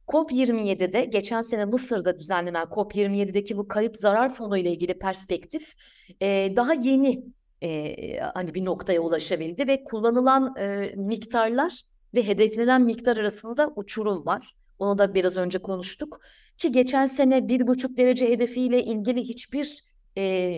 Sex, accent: female, native